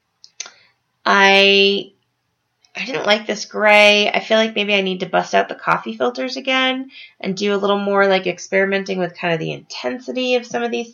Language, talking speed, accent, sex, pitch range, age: English, 190 wpm, American, female, 160-205 Hz, 20-39